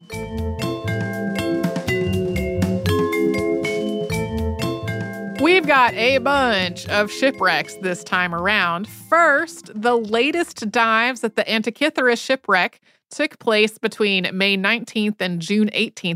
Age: 30-49